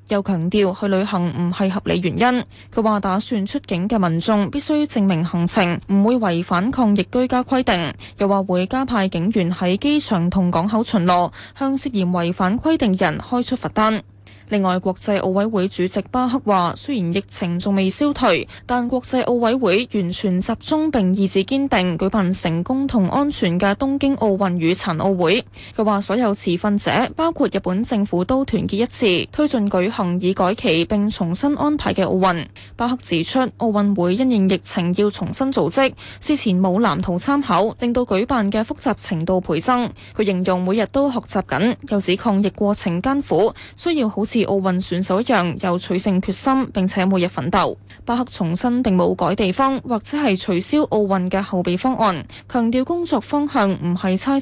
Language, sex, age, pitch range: Chinese, female, 20-39, 185-245 Hz